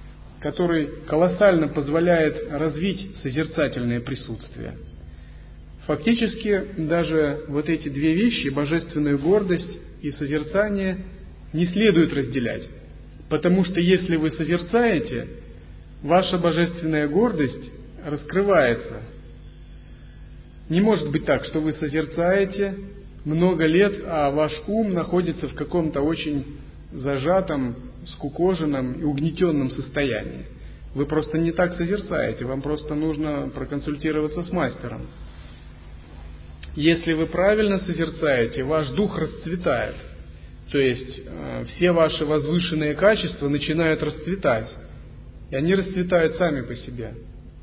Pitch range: 135-175 Hz